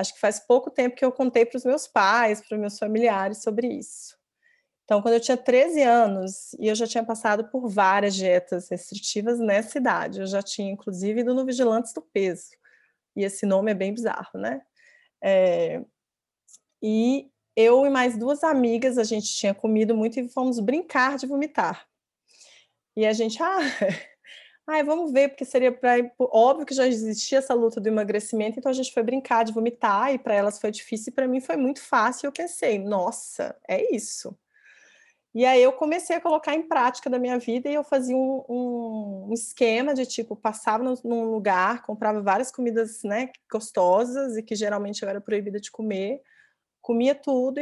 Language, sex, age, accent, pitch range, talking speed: Portuguese, female, 20-39, Brazilian, 215-265 Hz, 185 wpm